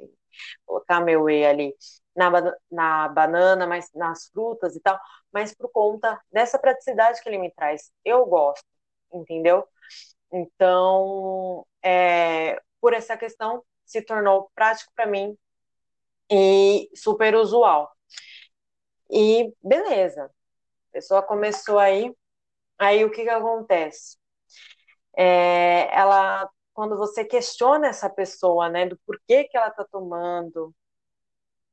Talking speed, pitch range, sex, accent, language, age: 115 wpm, 170-215 Hz, female, Brazilian, Portuguese, 20-39